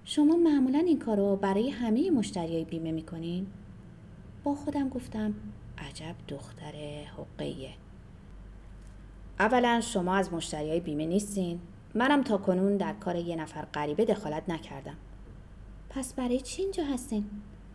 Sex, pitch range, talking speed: female, 145-220 Hz, 130 wpm